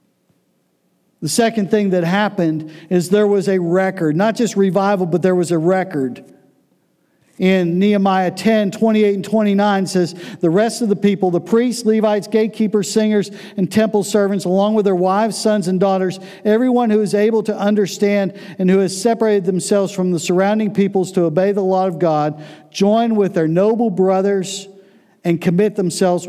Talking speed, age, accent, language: 170 wpm, 50-69, American, English